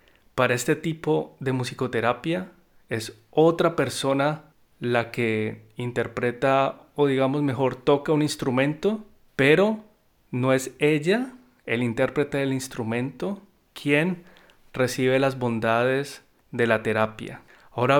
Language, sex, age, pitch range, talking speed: Spanish, male, 30-49, 120-145 Hz, 110 wpm